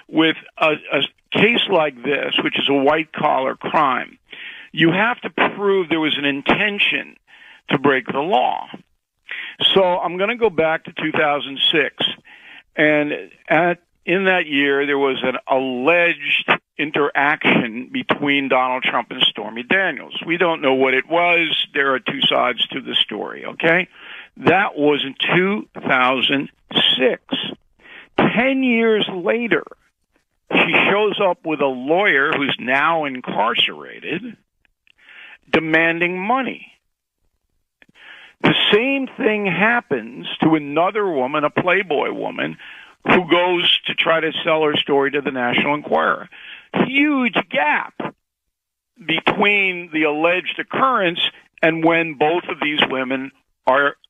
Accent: American